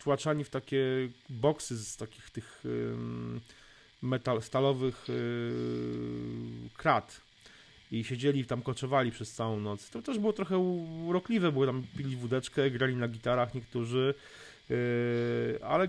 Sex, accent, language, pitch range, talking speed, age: male, native, Polish, 110-135 Hz, 120 wpm, 30-49